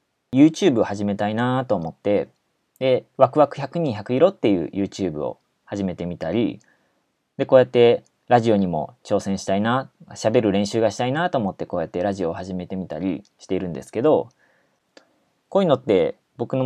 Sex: male